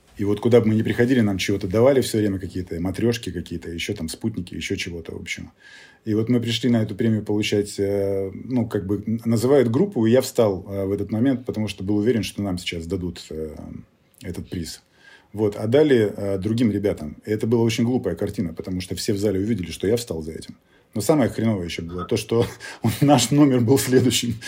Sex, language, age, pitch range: male, Russian, 30-49, 90-120 Hz